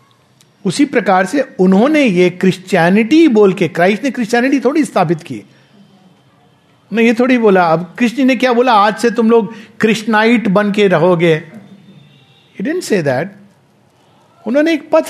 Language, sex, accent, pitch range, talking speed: English, male, Indian, 165-240 Hz, 100 wpm